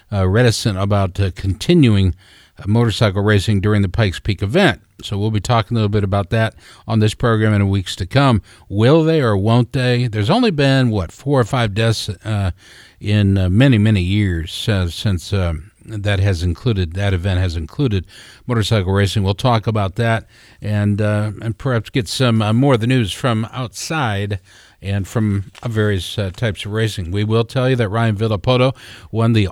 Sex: male